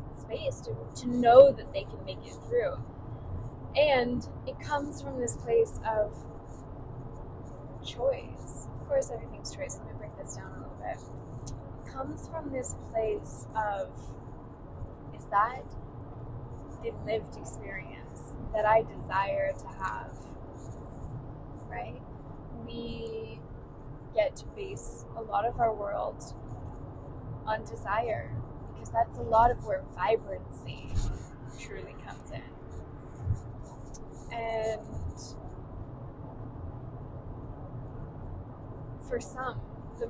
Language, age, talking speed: English, 10-29, 105 wpm